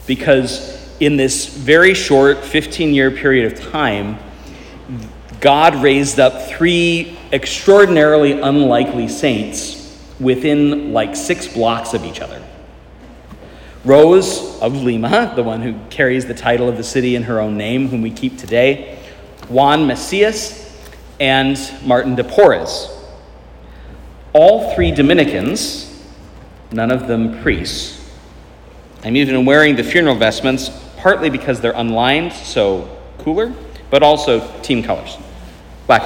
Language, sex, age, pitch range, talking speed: English, male, 40-59, 105-145 Hz, 120 wpm